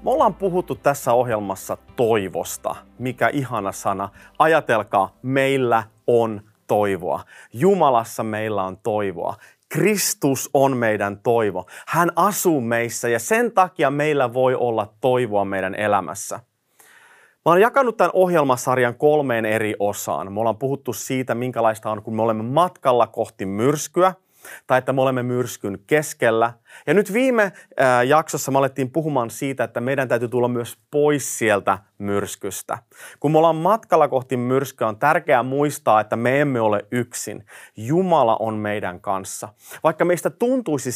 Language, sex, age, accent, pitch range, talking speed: Finnish, male, 30-49, native, 110-150 Hz, 140 wpm